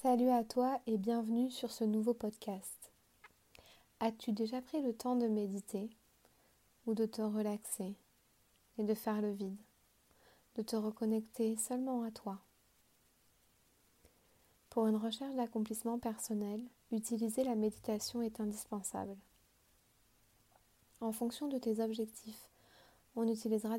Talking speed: 120 wpm